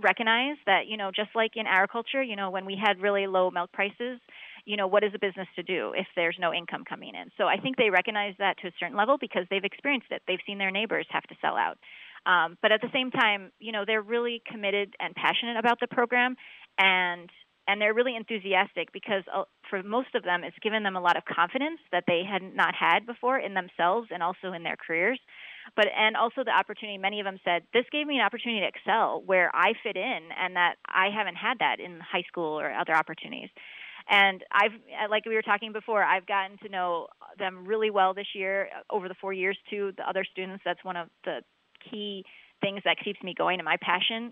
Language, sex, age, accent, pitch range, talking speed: English, female, 30-49, American, 180-220 Hz, 225 wpm